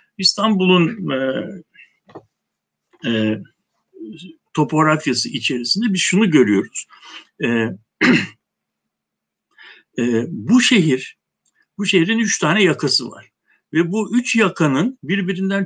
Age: 60-79